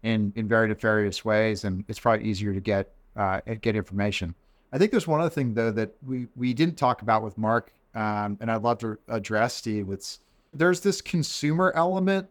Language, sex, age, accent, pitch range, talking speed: English, male, 40-59, American, 110-130 Hz, 195 wpm